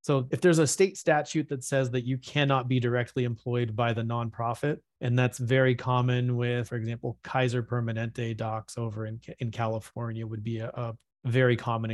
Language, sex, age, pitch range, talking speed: English, male, 30-49, 115-125 Hz, 185 wpm